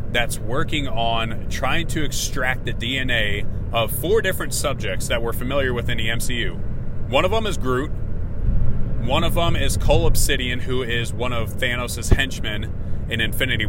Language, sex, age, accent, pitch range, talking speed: English, male, 30-49, American, 100-120 Hz, 165 wpm